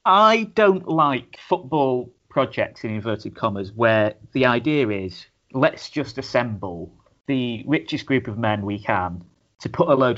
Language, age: English, 30-49